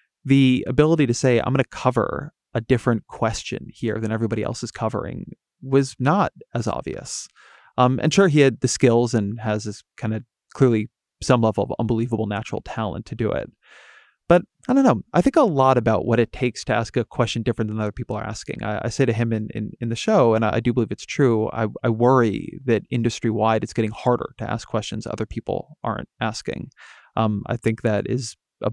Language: English